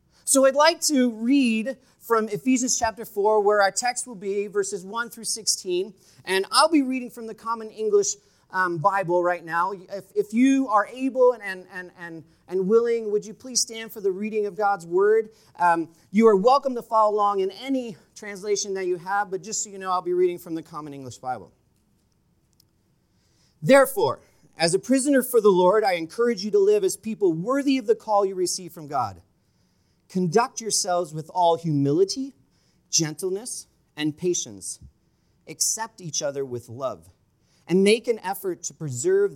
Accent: American